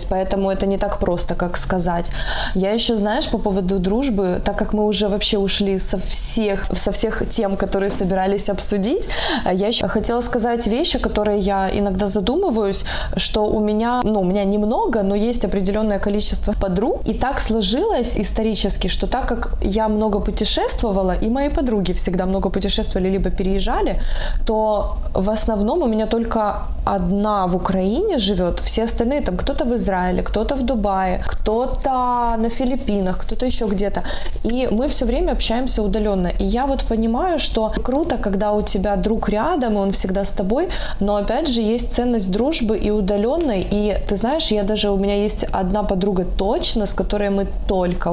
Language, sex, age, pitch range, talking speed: Russian, female, 20-39, 195-230 Hz, 170 wpm